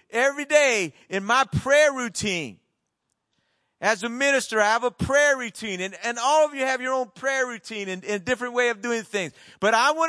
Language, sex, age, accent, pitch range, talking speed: English, male, 40-59, American, 215-280 Hz, 200 wpm